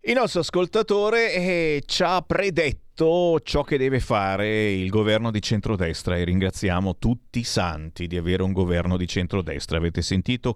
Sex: male